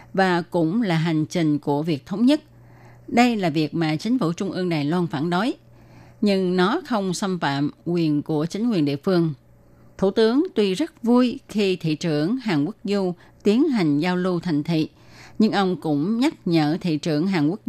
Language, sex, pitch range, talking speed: Vietnamese, female, 155-220 Hz, 195 wpm